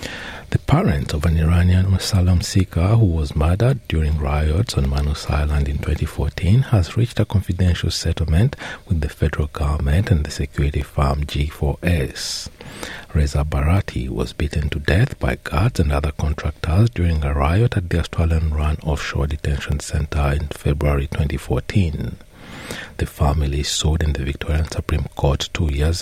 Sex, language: male, English